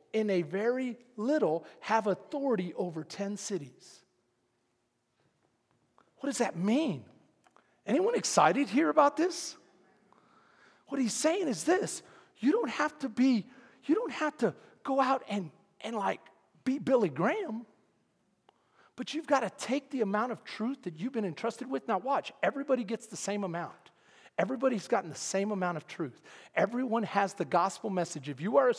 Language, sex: English, male